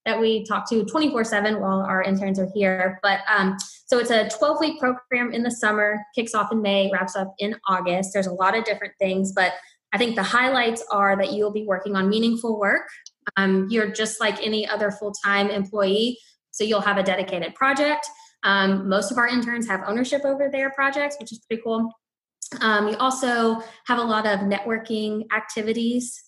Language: English